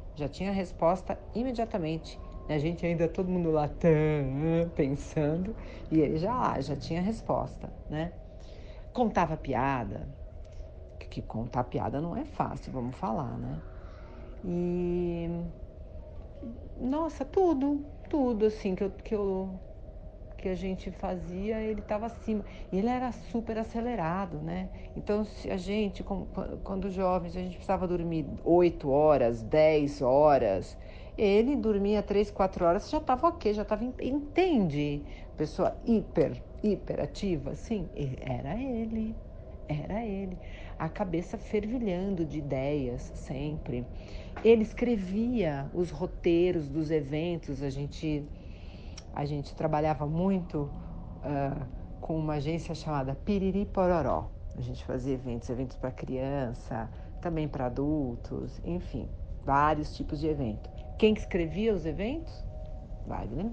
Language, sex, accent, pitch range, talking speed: Portuguese, female, Brazilian, 135-200 Hz, 125 wpm